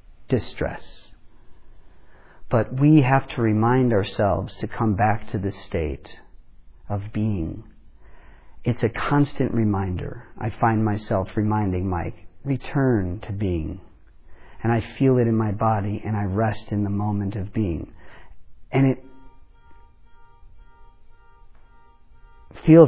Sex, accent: male, American